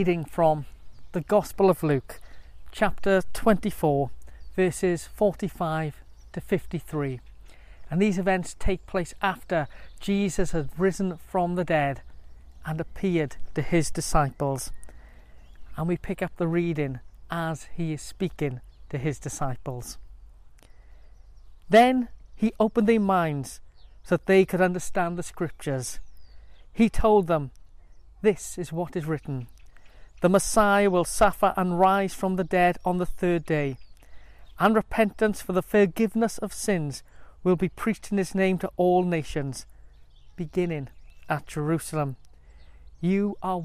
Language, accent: English, British